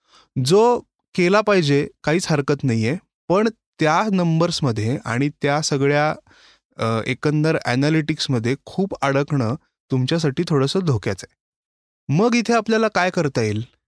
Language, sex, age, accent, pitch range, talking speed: Marathi, male, 20-39, native, 130-195 Hz, 105 wpm